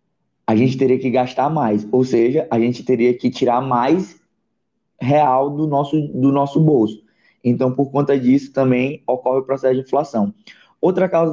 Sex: male